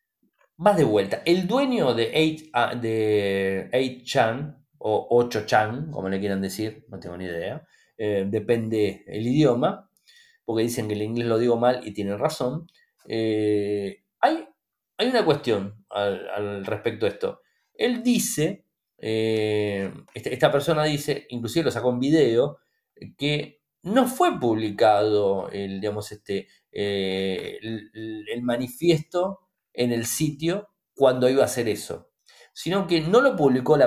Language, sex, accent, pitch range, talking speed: Spanish, male, Argentinian, 110-170 Hz, 140 wpm